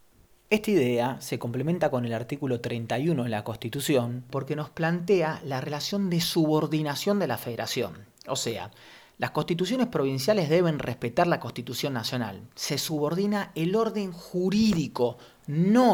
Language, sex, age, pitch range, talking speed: Spanish, male, 30-49, 125-160 Hz, 140 wpm